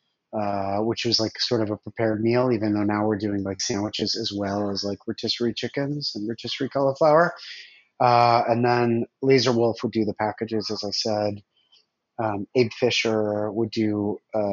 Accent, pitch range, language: American, 105-120 Hz, English